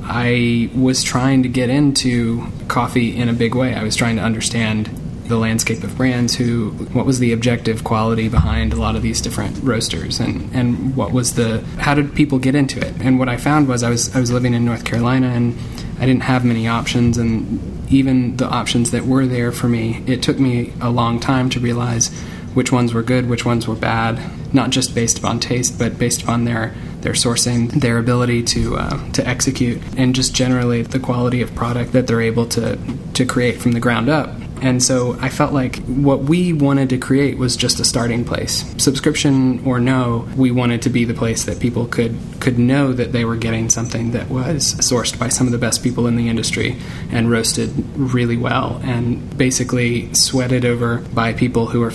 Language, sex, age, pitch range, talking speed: English, male, 20-39, 115-130 Hz, 210 wpm